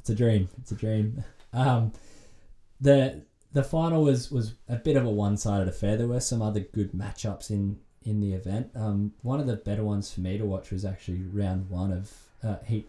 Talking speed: 215 wpm